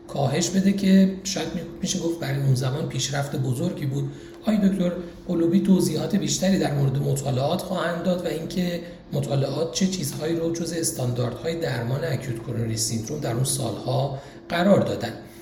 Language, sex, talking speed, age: Persian, male, 150 wpm, 40-59